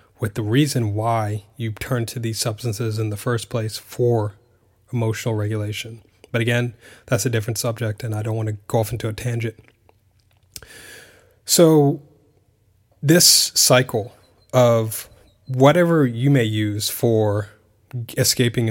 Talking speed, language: 135 wpm, English